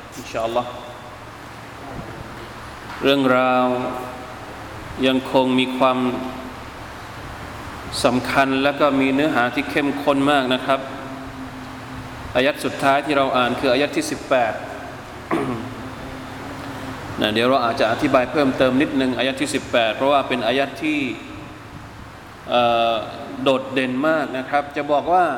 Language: Thai